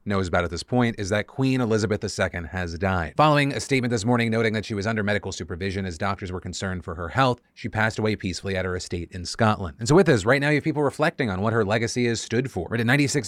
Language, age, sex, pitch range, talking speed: English, 30-49, male, 105-130 Hz, 265 wpm